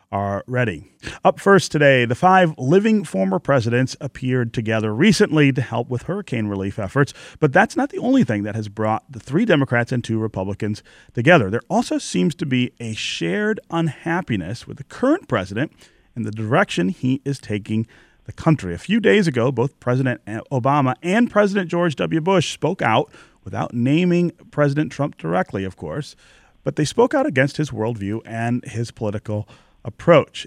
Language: English